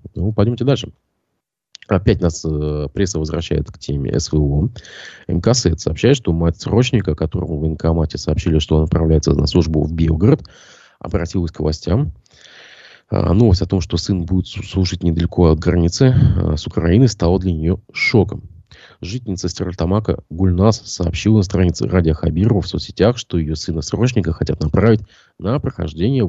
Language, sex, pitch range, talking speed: Russian, male, 80-105 Hz, 150 wpm